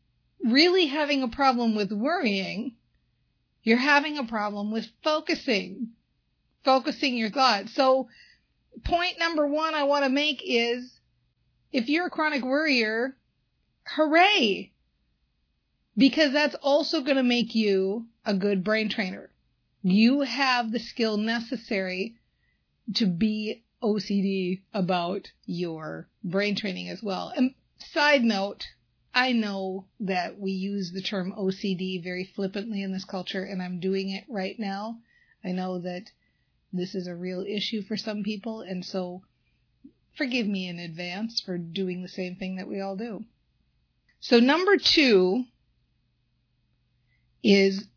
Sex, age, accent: female, 40-59, American